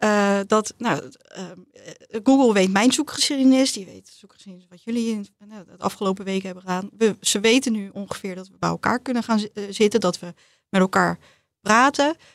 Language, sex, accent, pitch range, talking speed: Dutch, female, Dutch, 195-250 Hz, 180 wpm